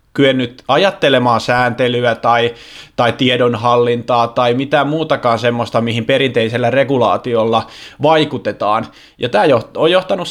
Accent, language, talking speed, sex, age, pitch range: native, Finnish, 105 wpm, male, 20-39, 125-150 Hz